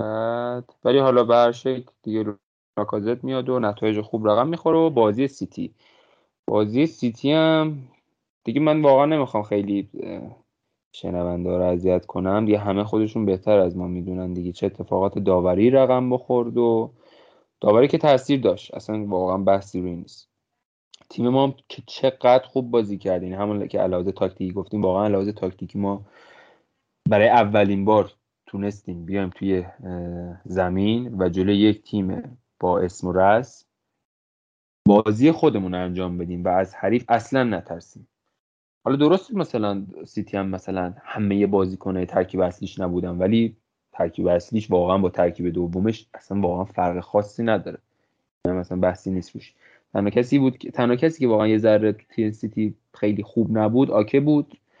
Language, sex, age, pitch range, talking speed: English, male, 30-49, 95-120 Hz, 140 wpm